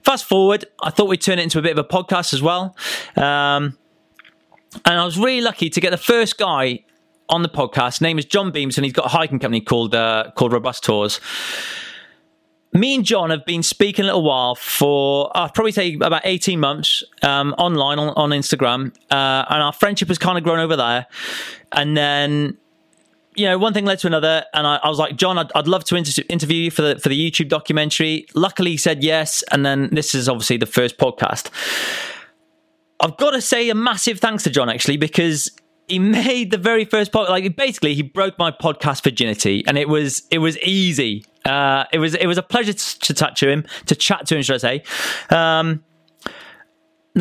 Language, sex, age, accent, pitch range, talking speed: English, male, 30-49, British, 145-195 Hz, 210 wpm